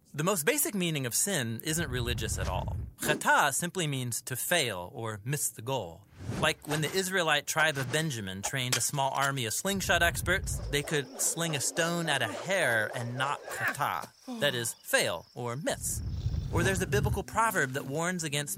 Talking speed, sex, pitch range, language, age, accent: 185 wpm, male, 120-170 Hz, English, 30-49, American